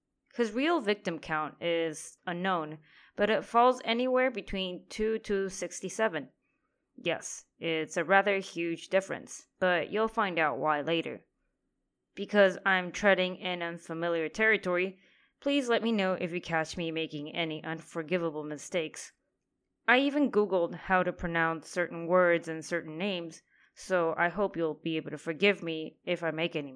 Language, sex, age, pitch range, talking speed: English, female, 20-39, 160-205 Hz, 150 wpm